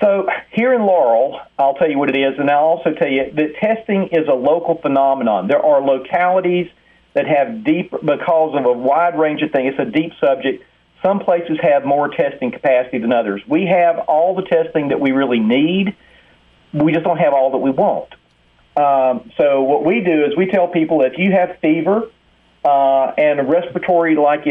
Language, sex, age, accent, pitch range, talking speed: English, male, 40-59, American, 135-180 Hz, 195 wpm